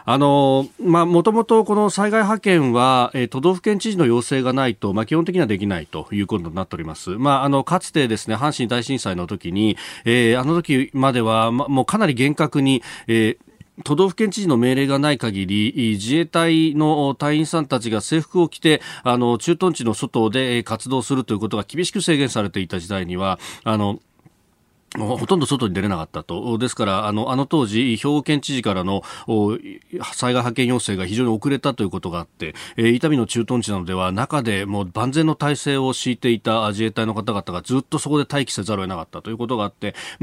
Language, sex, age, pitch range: Japanese, male, 40-59, 110-150 Hz